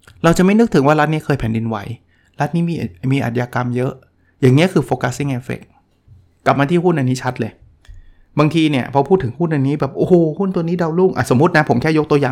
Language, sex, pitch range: Thai, male, 120-160 Hz